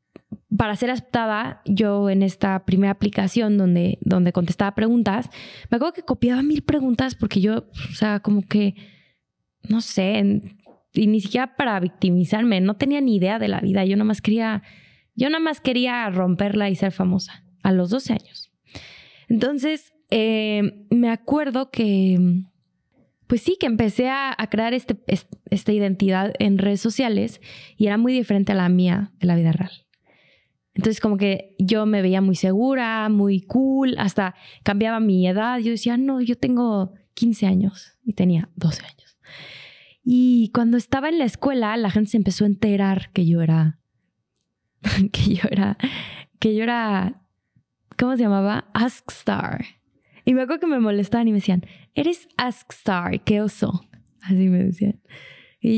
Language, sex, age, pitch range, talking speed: Spanish, female, 20-39, 195-245 Hz, 155 wpm